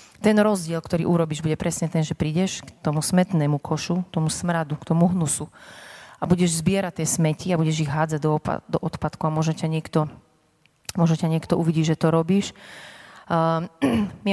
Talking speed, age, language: 170 wpm, 30-49, Slovak